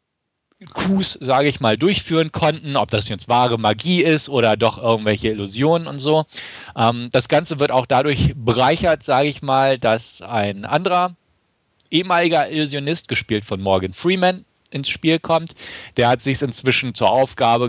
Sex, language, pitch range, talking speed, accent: male, German, 105-140 Hz, 155 wpm, German